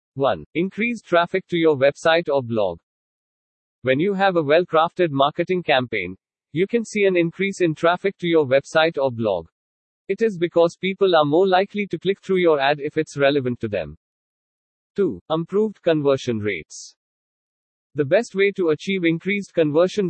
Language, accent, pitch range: English, Indian, 140-180 Hz